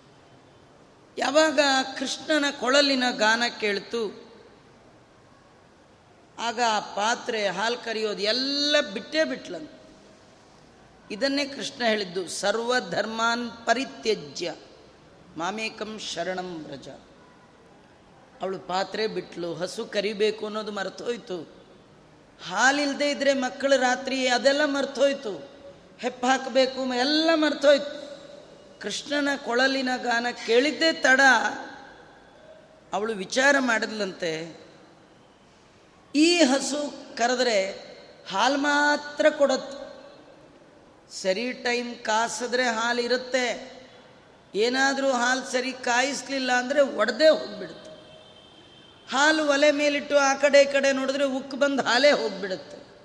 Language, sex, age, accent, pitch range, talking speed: Kannada, female, 30-49, native, 220-280 Hz, 85 wpm